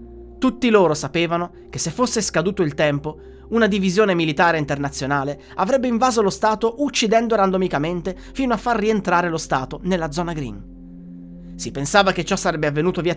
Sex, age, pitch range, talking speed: male, 30-49, 130-205 Hz, 160 wpm